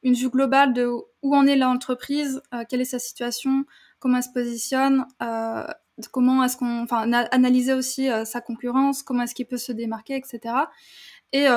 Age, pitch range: 20-39, 240-270 Hz